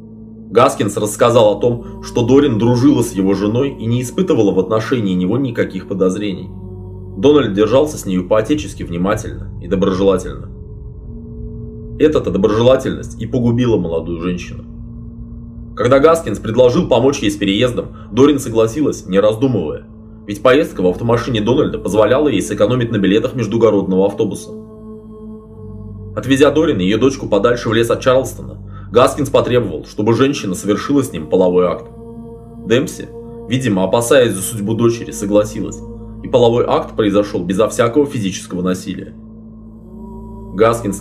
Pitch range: 100-115 Hz